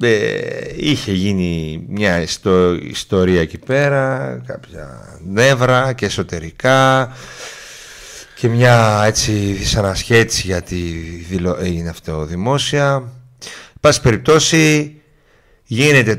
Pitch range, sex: 100-135 Hz, male